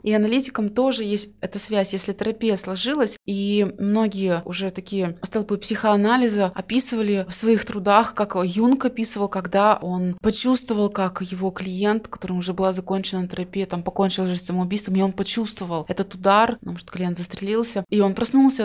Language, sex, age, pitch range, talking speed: Russian, female, 20-39, 185-215 Hz, 160 wpm